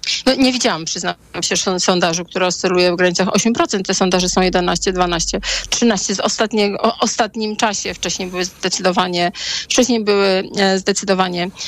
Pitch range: 200-240 Hz